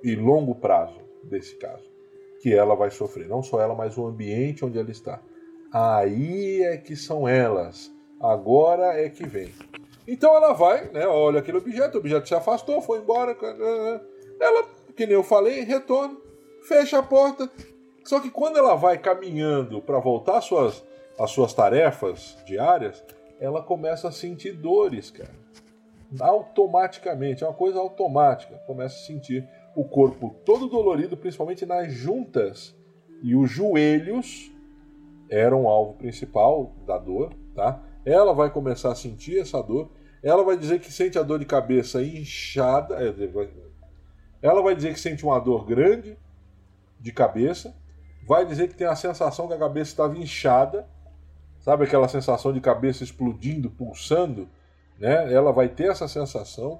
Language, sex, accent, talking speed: Portuguese, male, Brazilian, 155 wpm